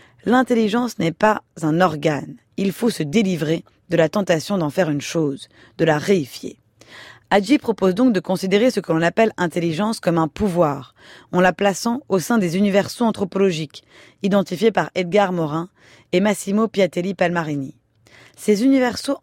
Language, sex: French, female